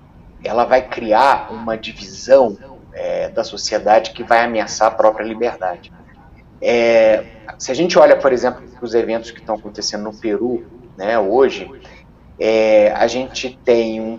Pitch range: 110-130 Hz